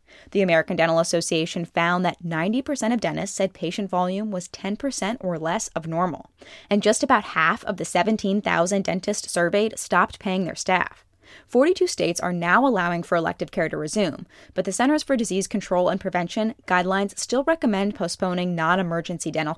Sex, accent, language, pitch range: female, American, English, 170-210 Hz